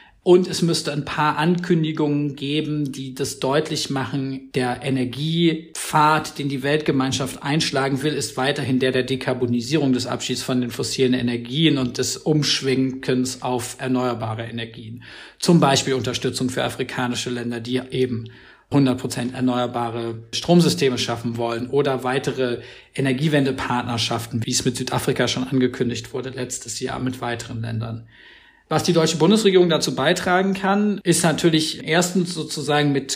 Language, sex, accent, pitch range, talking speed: German, male, German, 130-155 Hz, 140 wpm